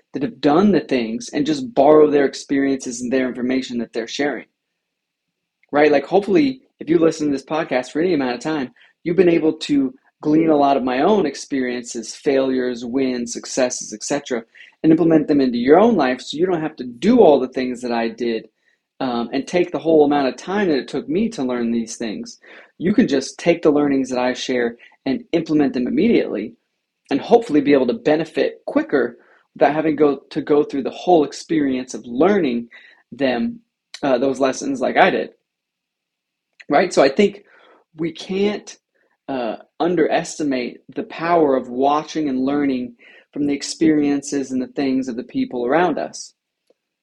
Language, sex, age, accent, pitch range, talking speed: English, male, 20-39, American, 130-165 Hz, 180 wpm